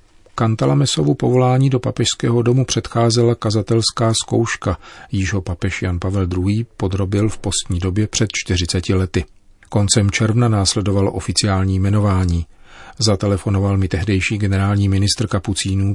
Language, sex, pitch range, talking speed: Czech, male, 95-110 Hz, 120 wpm